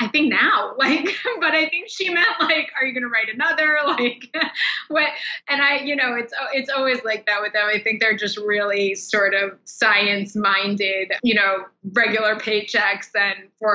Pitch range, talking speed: 195-235 Hz, 190 wpm